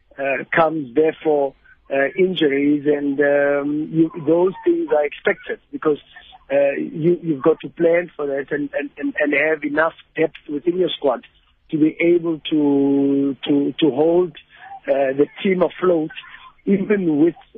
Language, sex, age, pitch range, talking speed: English, male, 50-69, 140-165 Hz, 155 wpm